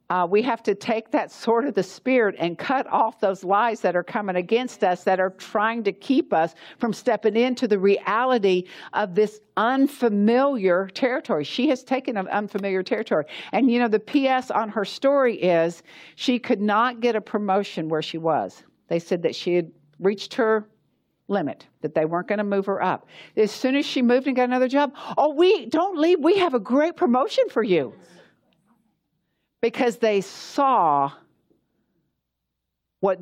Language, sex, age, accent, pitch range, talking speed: English, female, 60-79, American, 170-230 Hz, 180 wpm